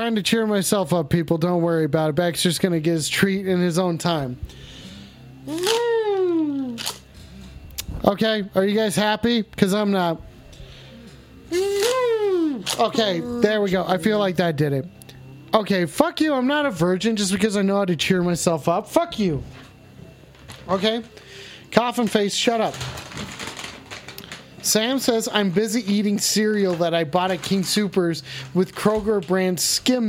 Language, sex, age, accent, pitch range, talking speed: English, male, 30-49, American, 170-225 Hz, 155 wpm